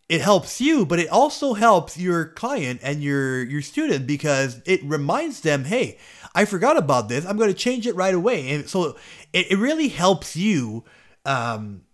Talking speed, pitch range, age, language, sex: 185 wpm, 145-200 Hz, 30-49, English, male